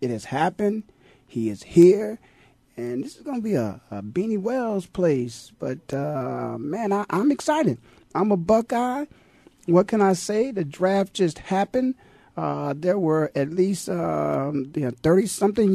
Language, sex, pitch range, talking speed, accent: English, male, 125-185 Hz, 165 wpm, American